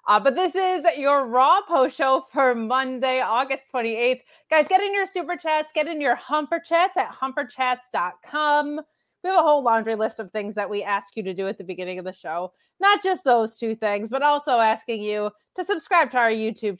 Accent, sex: American, female